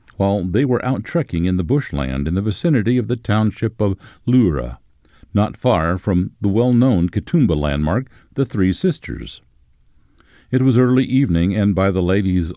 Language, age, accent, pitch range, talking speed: English, 60-79, American, 85-120 Hz, 160 wpm